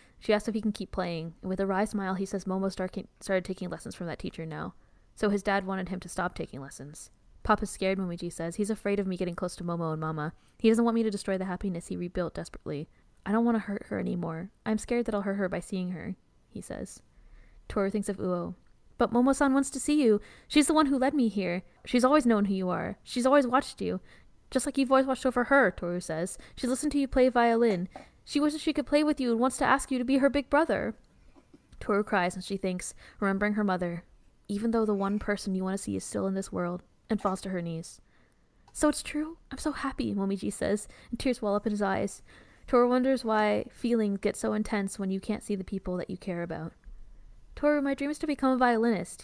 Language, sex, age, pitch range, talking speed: English, female, 10-29, 190-255 Hz, 245 wpm